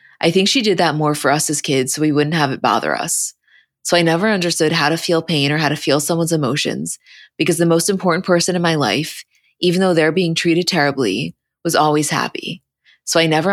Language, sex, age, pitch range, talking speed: English, female, 20-39, 145-170 Hz, 225 wpm